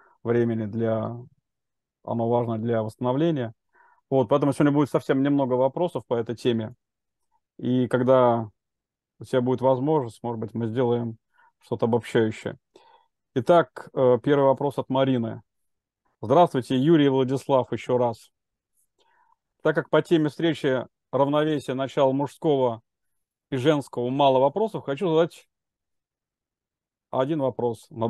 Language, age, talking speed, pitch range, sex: Russian, 30-49, 115 wpm, 120-155 Hz, male